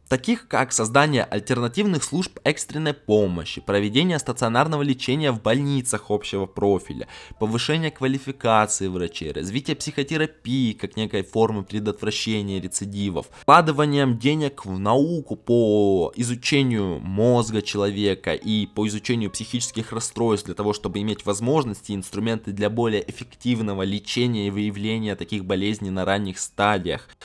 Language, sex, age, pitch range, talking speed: Russian, male, 20-39, 100-130 Hz, 120 wpm